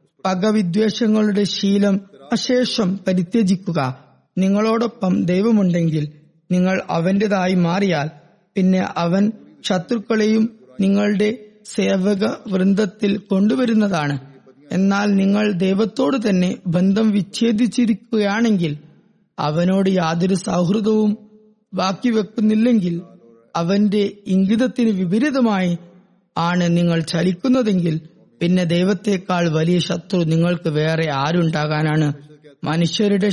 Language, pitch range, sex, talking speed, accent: Malayalam, 175-215 Hz, female, 70 wpm, native